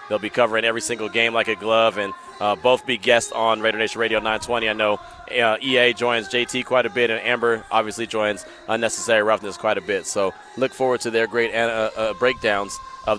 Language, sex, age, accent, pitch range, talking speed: English, male, 30-49, American, 115-140 Hz, 215 wpm